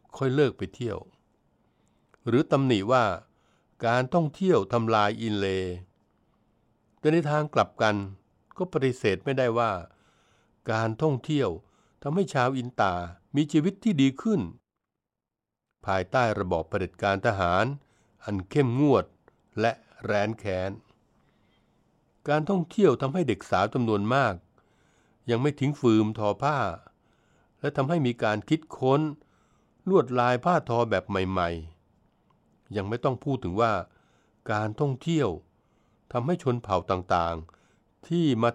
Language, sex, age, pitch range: Thai, male, 60-79, 100-135 Hz